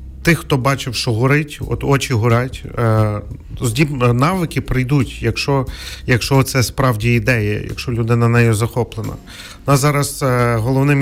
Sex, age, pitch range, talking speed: male, 40-59, 115-135 Hz, 120 wpm